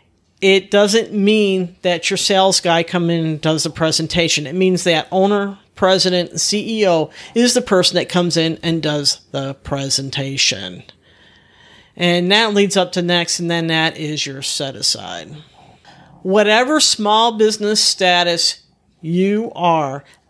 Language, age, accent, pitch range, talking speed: English, 50-69, American, 155-200 Hz, 140 wpm